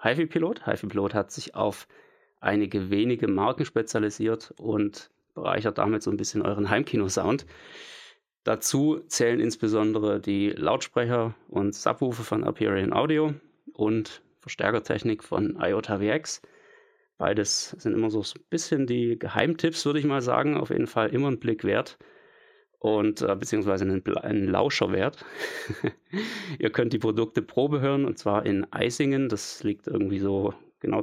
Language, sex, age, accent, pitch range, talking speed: German, male, 30-49, German, 105-155 Hz, 145 wpm